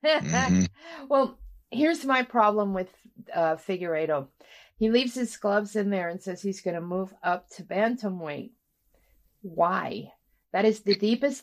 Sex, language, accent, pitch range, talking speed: female, English, American, 195-245 Hz, 140 wpm